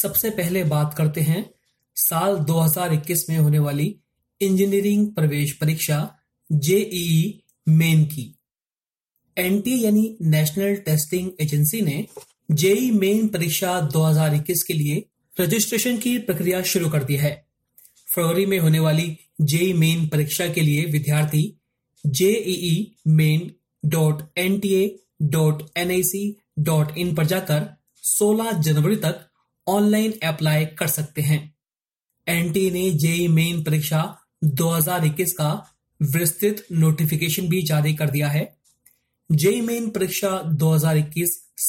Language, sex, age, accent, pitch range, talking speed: Hindi, male, 30-49, native, 155-190 Hz, 110 wpm